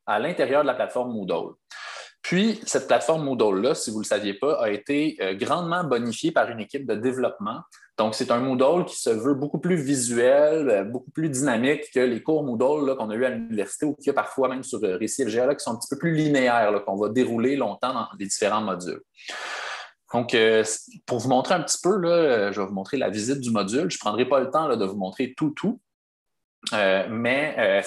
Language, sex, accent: French, male, Canadian